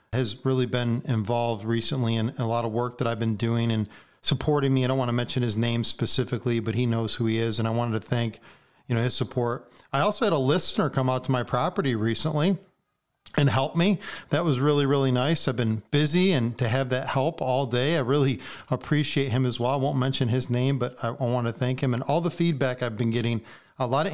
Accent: American